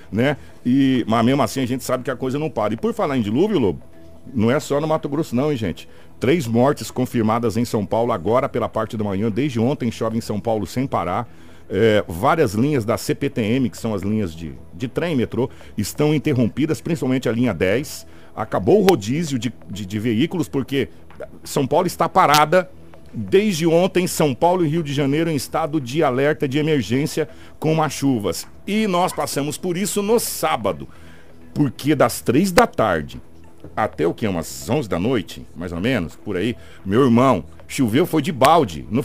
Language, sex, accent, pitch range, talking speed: Portuguese, male, Brazilian, 110-155 Hz, 195 wpm